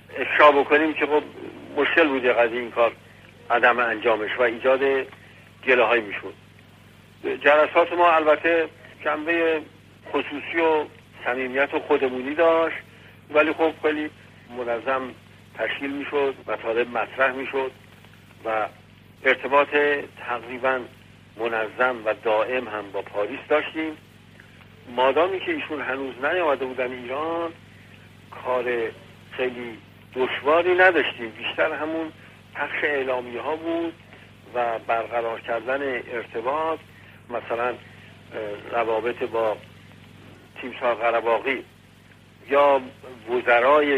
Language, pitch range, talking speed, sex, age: Persian, 105-140 Hz, 100 wpm, male, 50-69